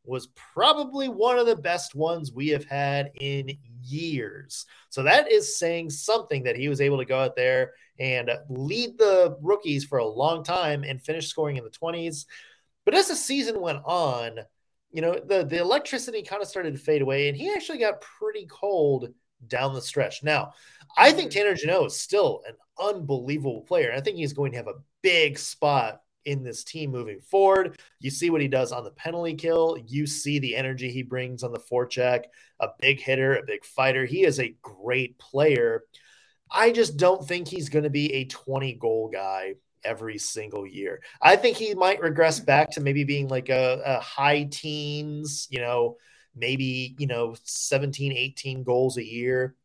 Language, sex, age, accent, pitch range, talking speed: English, male, 20-39, American, 130-180 Hz, 190 wpm